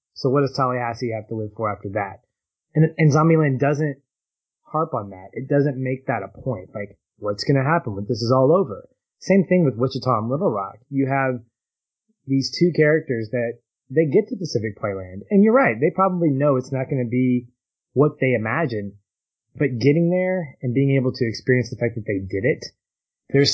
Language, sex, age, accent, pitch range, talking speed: English, male, 20-39, American, 110-140 Hz, 205 wpm